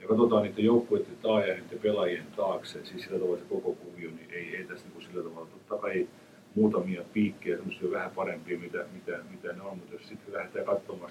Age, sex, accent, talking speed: 50-69, male, native, 200 wpm